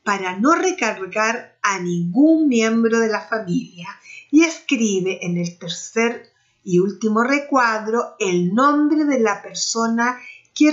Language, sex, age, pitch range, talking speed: Spanish, female, 50-69, 190-250 Hz, 130 wpm